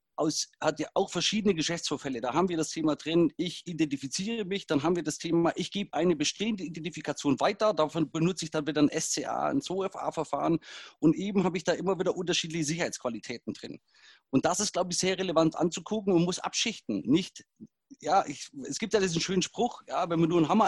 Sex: male